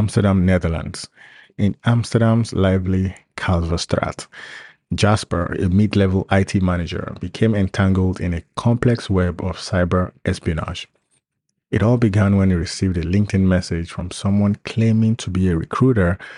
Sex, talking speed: male, 135 wpm